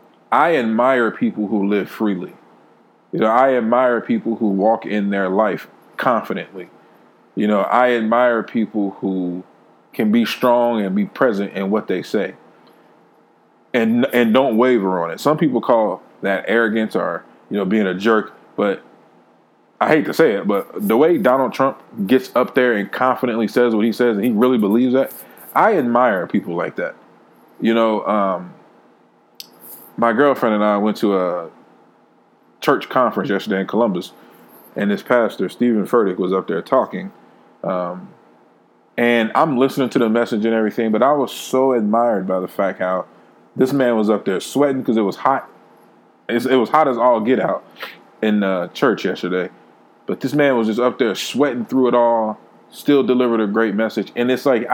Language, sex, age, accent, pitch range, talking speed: English, male, 20-39, American, 105-125 Hz, 180 wpm